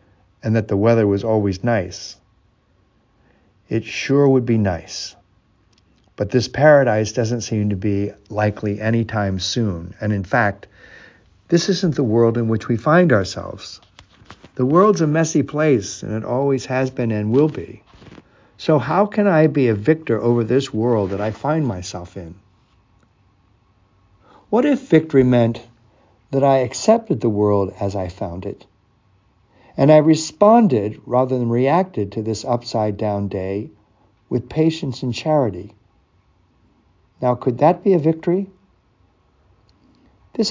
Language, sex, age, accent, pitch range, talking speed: English, male, 60-79, American, 100-140 Hz, 140 wpm